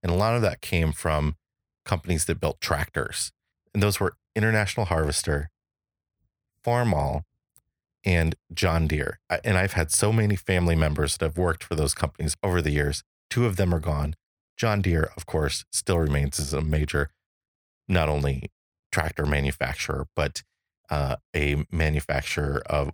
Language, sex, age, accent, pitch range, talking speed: English, male, 30-49, American, 75-90 Hz, 155 wpm